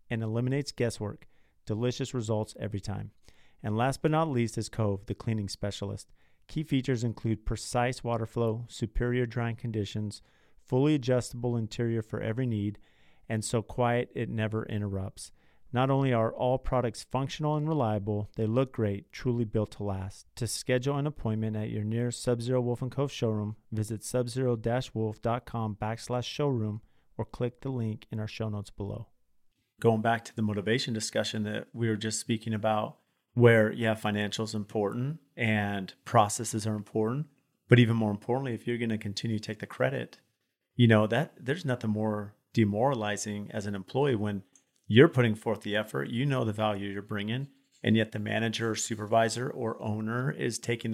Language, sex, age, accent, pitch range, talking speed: English, male, 40-59, American, 105-125 Hz, 170 wpm